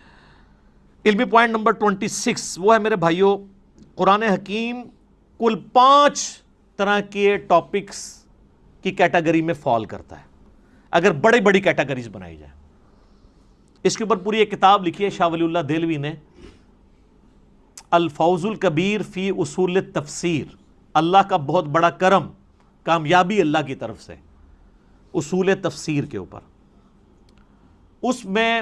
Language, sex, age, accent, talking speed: English, male, 50-69, Indian, 100 wpm